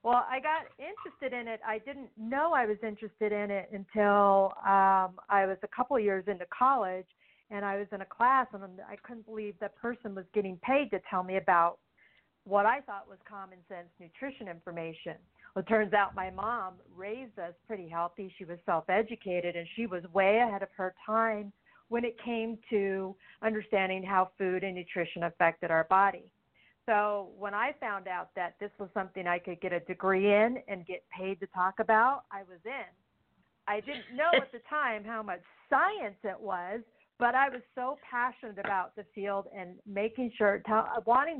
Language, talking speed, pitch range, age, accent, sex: English, 190 wpm, 185-230 Hz, 50-69, American, female